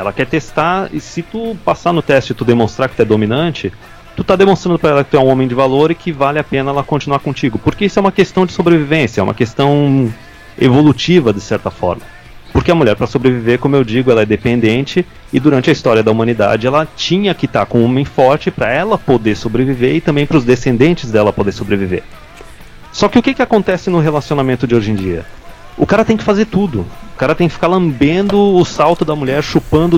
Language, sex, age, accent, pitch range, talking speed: Portuguese, male, 30-49, Brazilian, 120-160 Hz, 230 wpm